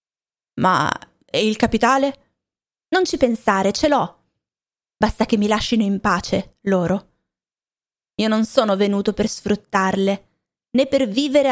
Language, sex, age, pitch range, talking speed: Italian, female, 20-39, 195-235 Hz, 130 wpm